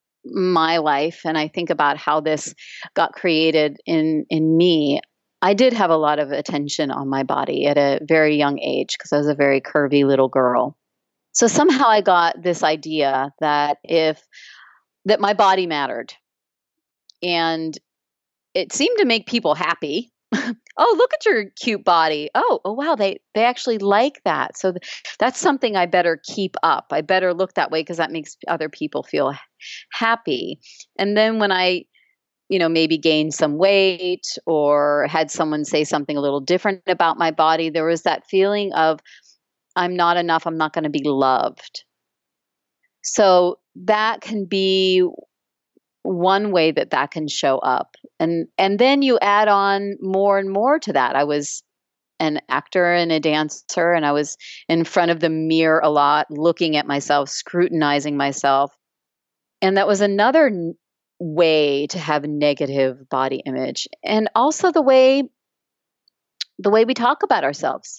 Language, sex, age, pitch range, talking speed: English, female, 30-49, 150-200 Hz, 165 wpm